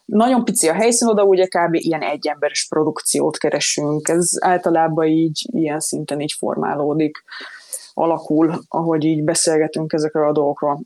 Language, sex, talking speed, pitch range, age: Hungarian, female, 140 wpm, 150-180 Hz, 20-39